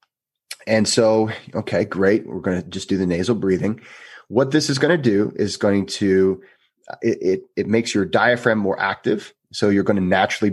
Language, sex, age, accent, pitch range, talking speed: English, male, 30-49, American, 95-120 Hz, 195 wpm